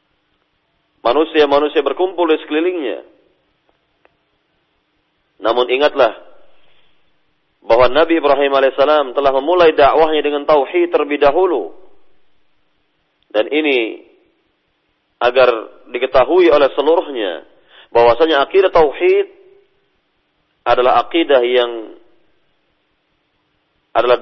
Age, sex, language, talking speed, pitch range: 40-59, male, Malay, 75 wpm, 125-165 Hz